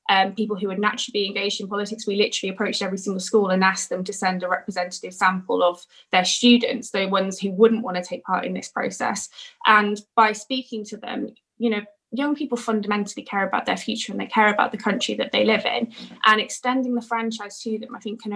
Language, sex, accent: English, female, British